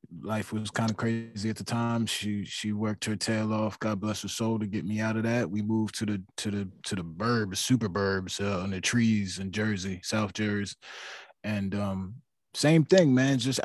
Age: 20-39